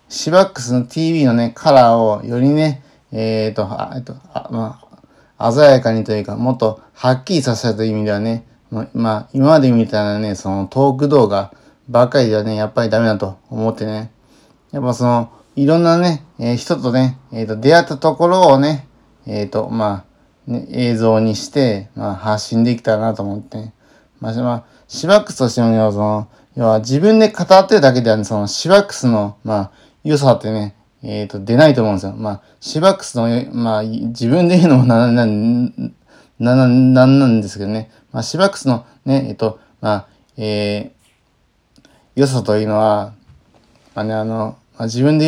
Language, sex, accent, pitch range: Japanese, male, native, 105-135 Hz